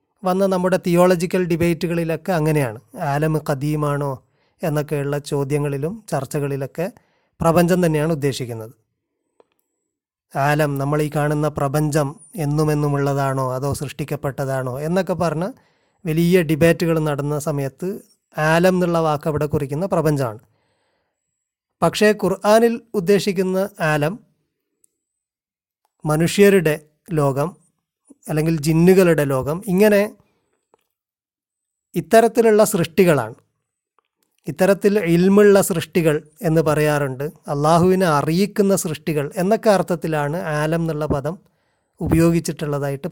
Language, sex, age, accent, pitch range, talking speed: Malayalam, male, 30-49, native, 150-185 Hz, 80 wpm